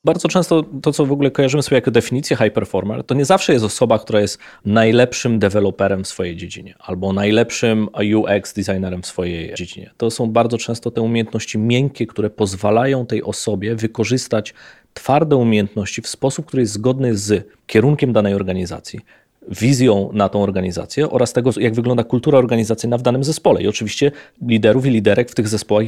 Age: 30-49